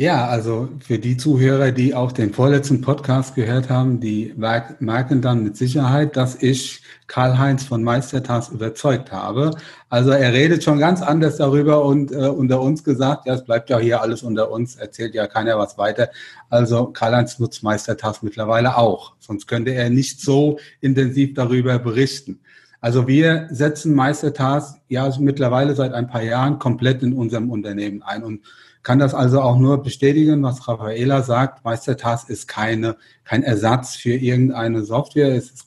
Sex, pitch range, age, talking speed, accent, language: male, 120-140 Hz, 40-59, 165 wpm, German, German